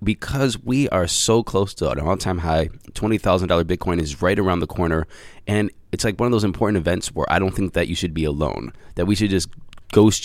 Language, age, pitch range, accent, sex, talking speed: English, 20-39, 85-105 Hz, American, male, 225 wpm